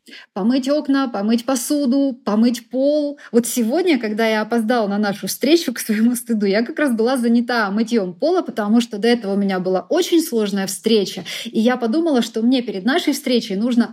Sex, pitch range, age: female, 210-260 Hz, 20-39